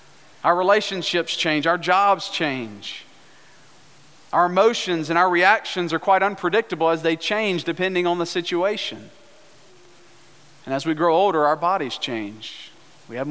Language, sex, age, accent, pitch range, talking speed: English, male, 40-59, American, 155-195 Hz, 140 wpm